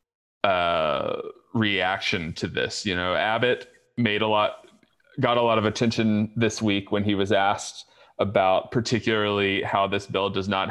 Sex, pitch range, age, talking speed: male, 95-120 Hz, 30-49, 155 wpm